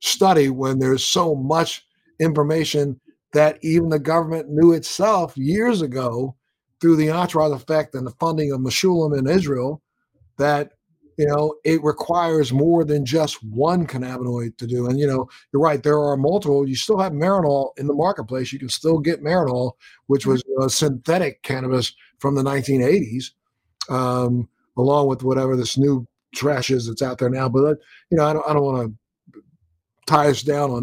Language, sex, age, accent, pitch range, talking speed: English, male, 50-69, American, 130-165 Hz, 175 wpm